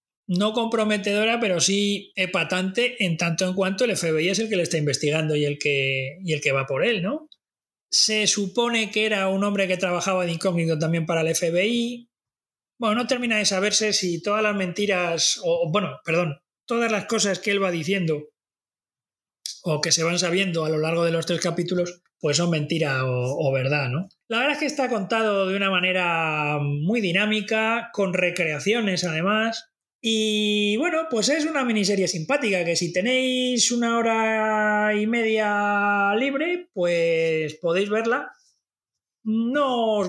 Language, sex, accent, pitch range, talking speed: Spanish, male, Spanish, 170-220 Hz, 165 wpm